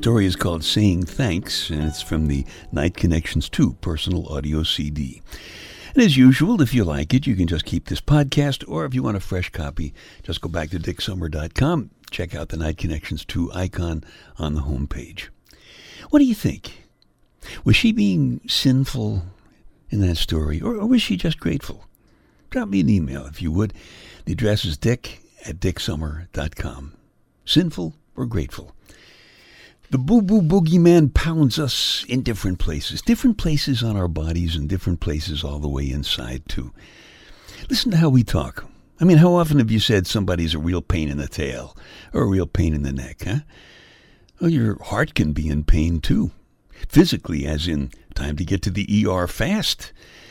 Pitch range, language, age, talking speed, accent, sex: 75-125 Hz, English, 60-79, 180 wpm, American, male